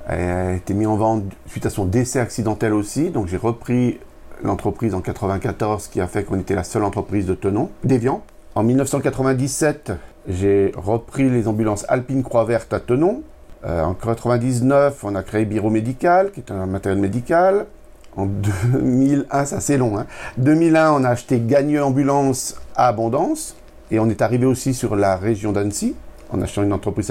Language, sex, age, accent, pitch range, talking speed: French, male, 50-69, French, 100-125 Hz, 175 wpm